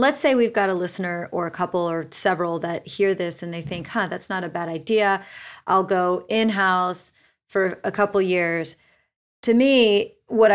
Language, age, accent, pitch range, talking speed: English, 40-59, American, 175-200 Hz, 190 wpm